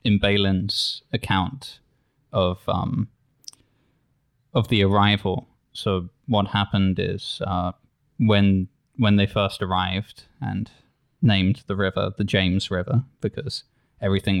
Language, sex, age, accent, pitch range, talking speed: English, male, 20-39, British, 95-120 Hz, 115 wpm